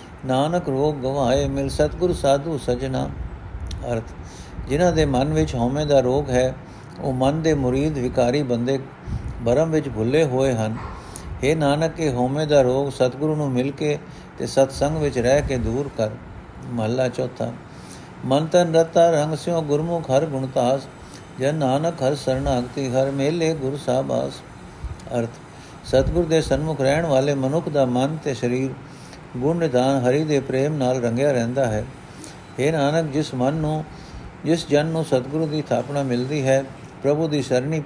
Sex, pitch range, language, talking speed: male, 125-155 Hz, Punjabi, 150 wpm